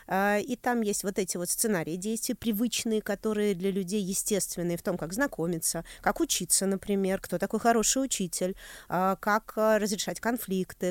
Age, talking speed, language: 20-39, 150 wpm, Russian